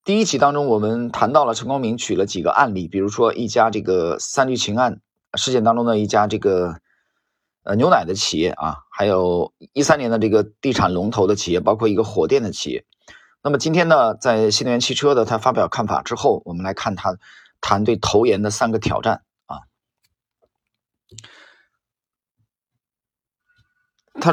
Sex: male